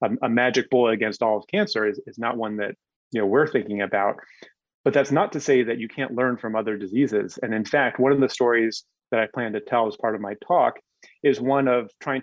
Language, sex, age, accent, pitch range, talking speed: English, male, 30-49, American, 110-130 Hz, 245 wpm